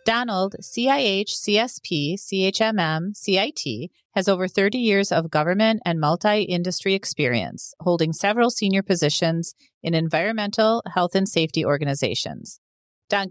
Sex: female